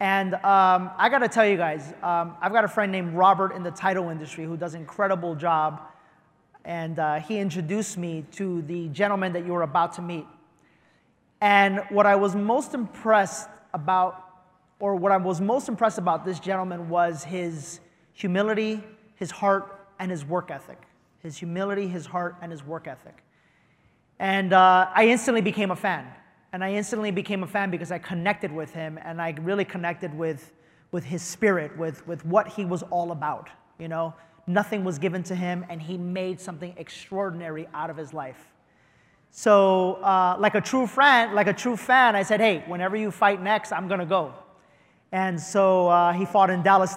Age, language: 30-49, English